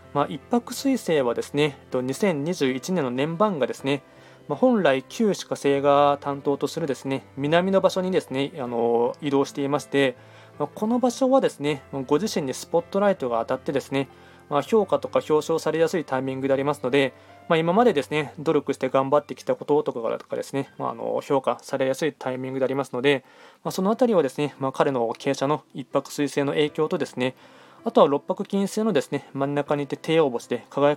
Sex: male